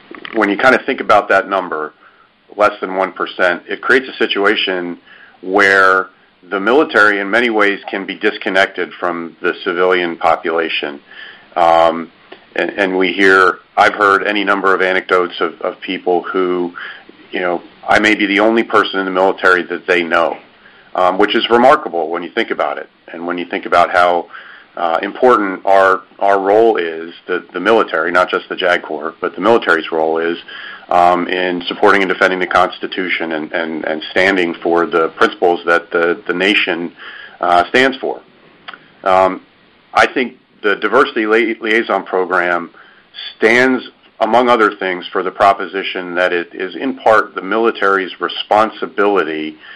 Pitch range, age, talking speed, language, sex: 85-100 Hz, 40-59, 165 wpm, English, male